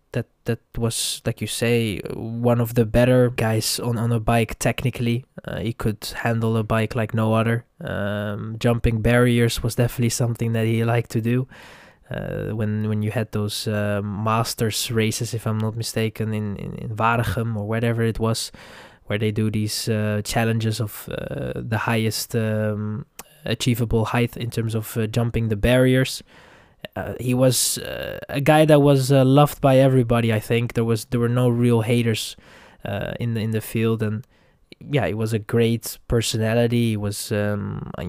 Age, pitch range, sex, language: 20-39, 110-125 Hz, male, English